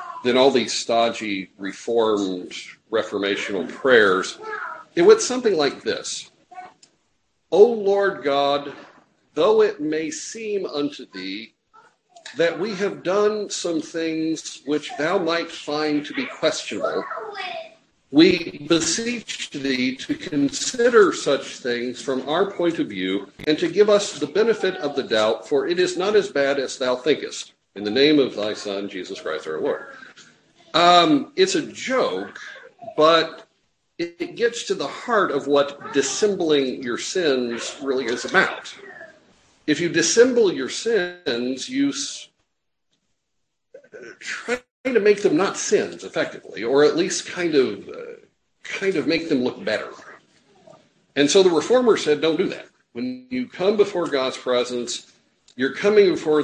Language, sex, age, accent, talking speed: English, male, 50-69, American, 140 wpm